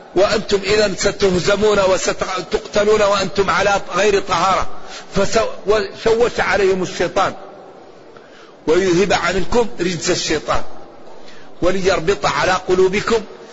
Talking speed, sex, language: 80 wpm, male, Arabic